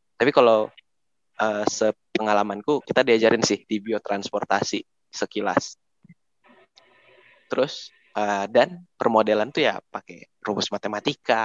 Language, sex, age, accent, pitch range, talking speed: Indonesian, male, 20-39, native, 110-145 Hz, 100 wpm